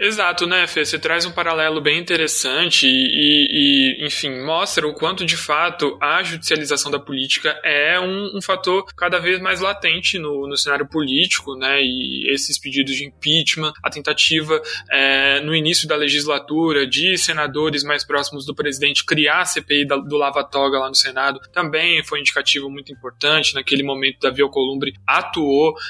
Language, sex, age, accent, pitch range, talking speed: Portuguese, male, 20-39, Brazilian, 145-185 Hz, 165 wpm